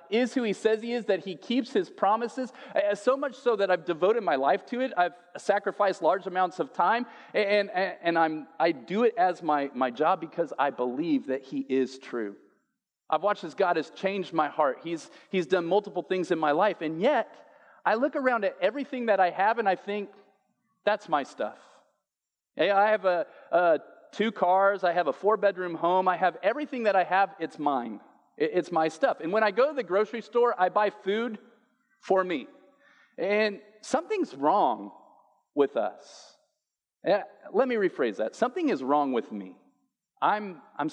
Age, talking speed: 40-59, 190 wpm